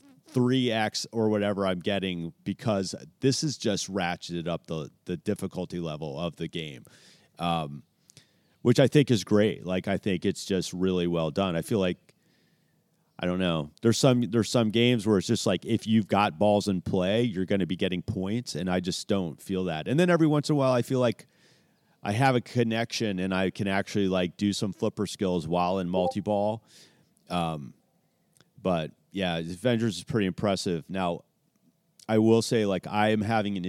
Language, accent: English, American